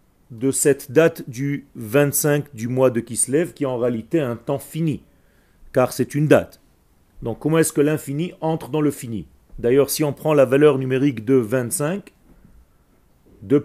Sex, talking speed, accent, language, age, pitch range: male, 170 wpm, French, French, 40-59, 125-155 Hz